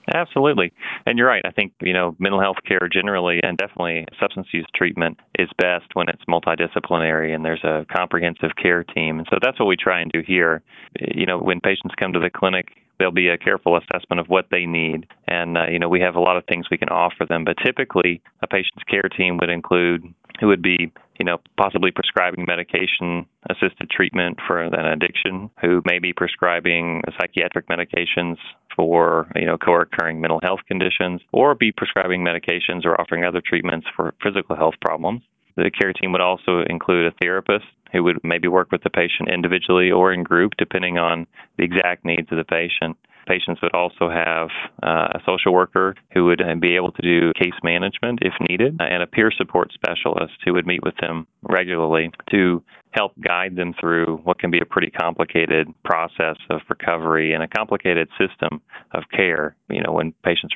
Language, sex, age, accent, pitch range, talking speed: English, male, 30-49, American, 85-90 Hz, 190 wpm